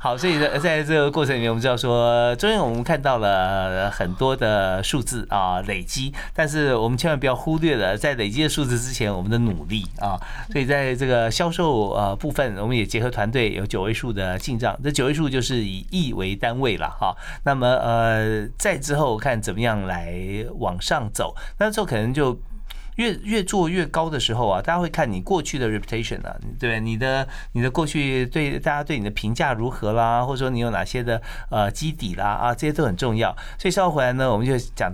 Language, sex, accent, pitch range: Chinese, male, native, 110-150 Hz